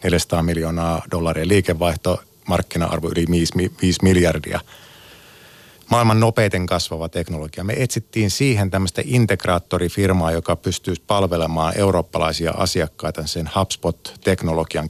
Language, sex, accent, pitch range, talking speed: Finnish, male, native, 85-100 Hz, 95 wpm